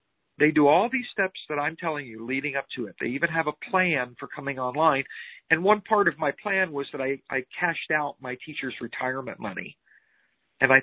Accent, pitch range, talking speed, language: American, 130-165 Hz, 215 wpm, English